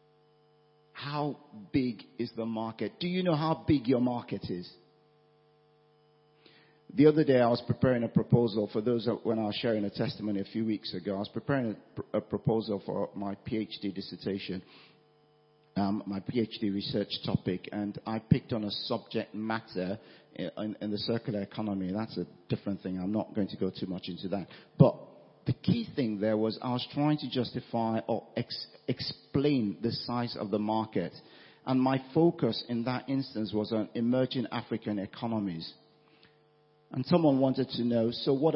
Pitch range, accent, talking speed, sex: 110-150 Hz, British, 170 wpm, male